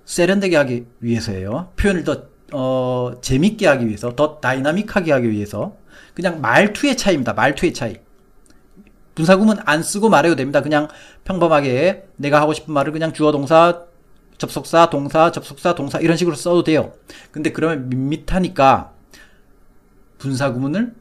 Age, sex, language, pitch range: 40-59, male, Korean, 125-170 Hz